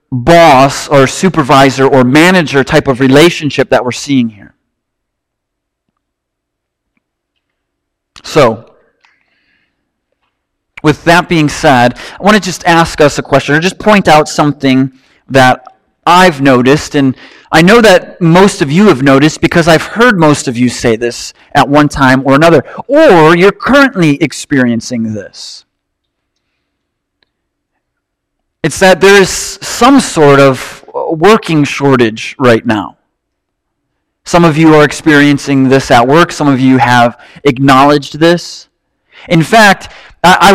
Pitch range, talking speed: 135-175 Hz, 130 wpm